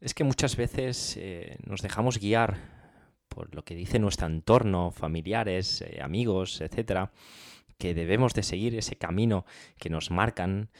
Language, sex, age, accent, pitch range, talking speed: Spanish, male, 20-39, Spanish, 90-120 Hz, 150 wpm